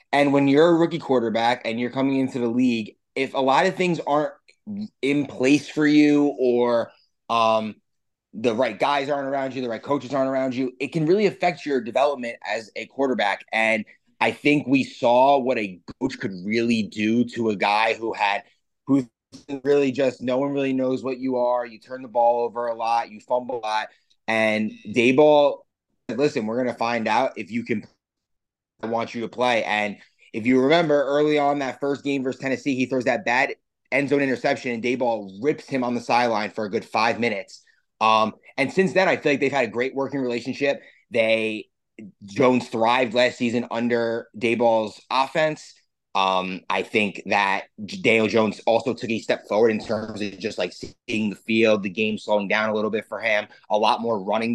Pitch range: 110-140 Hz